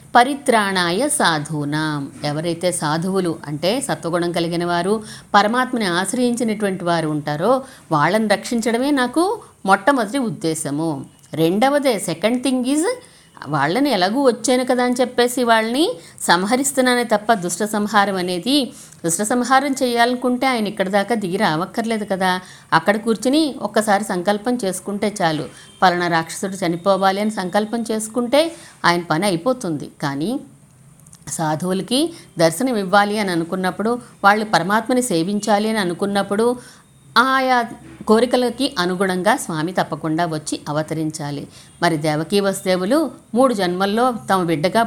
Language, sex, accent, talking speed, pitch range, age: Telugu, female, native, 105 wpm, 170-245 Hz, 50-69